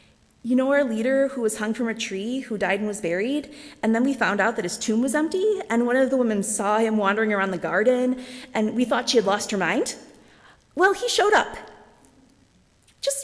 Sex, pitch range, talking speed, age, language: female, 220-265 Hz, 220 wpm, 30-49, English